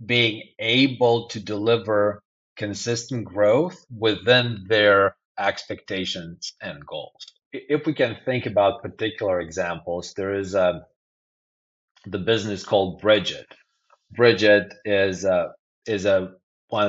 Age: 30-49